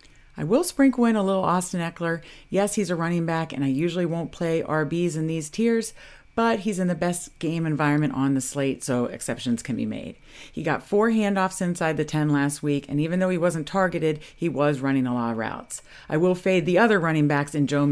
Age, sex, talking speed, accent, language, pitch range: 40-59, female, 230 wpm, American, English, 135-190 Hz